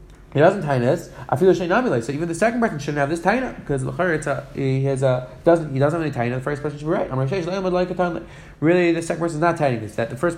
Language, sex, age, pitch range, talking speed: English, male, 30-49, 135-185 Hz, 285 wpm